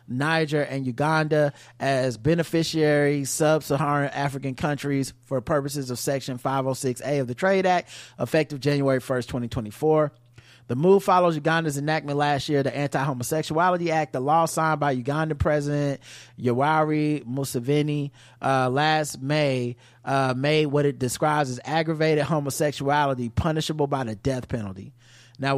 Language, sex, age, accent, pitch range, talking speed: English, male, 30-49, American, 125-155 Hz, 130 wpm